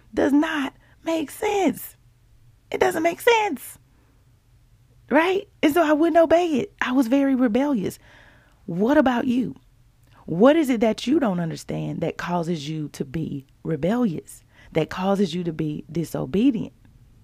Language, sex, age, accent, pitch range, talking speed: English, female, 30-49, American, 170-280 Hz, 145 wpm